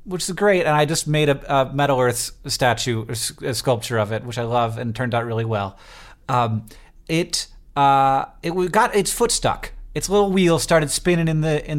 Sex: male